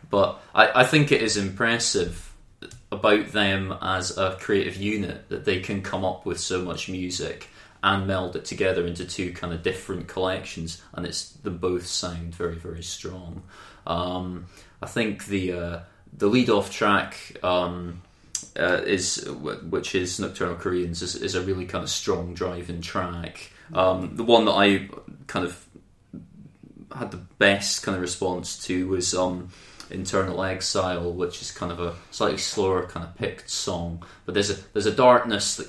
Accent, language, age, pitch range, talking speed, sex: British, English, 20-39, 90-100 Hz, 170 wpm, male